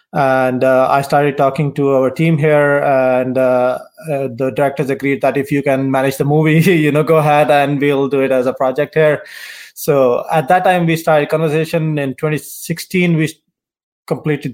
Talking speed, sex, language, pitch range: 190 wpm, male, Punjabi, 130-155 Hz